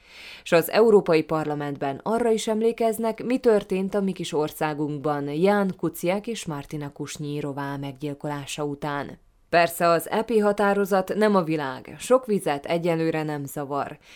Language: Hungarian